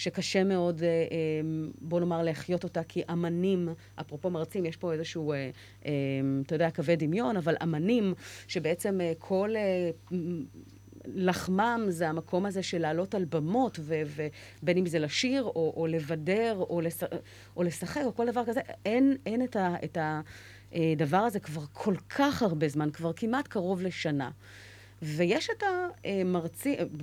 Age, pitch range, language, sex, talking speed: 30-49, 160-225 Hz, Hebrew, female, 135 wpm